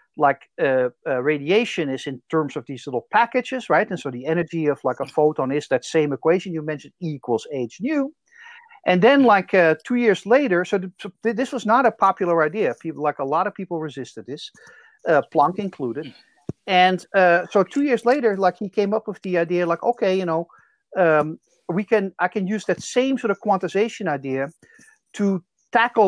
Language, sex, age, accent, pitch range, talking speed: English, male, 50-69, Dutch, 145-200 Hz, 200 wpm